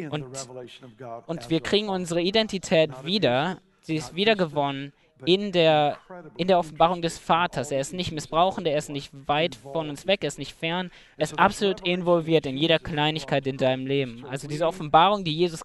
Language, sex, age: German, male, 20-39